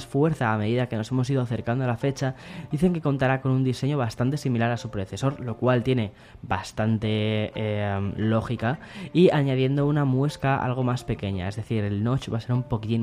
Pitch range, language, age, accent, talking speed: 115-135 Hz, Spanish, 10-29, Spanish, 205 wpm